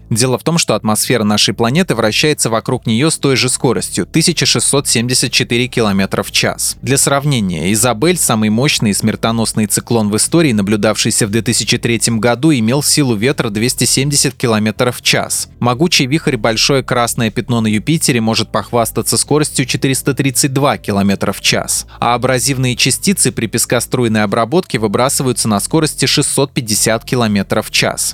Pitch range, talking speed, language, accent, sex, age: 110-140 Hz, 140 wpm, Russian, native, male, 20-39